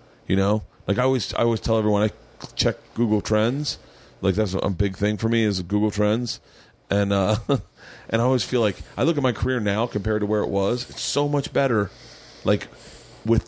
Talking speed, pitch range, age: 210 wpm, 105-130 Hz, 30-49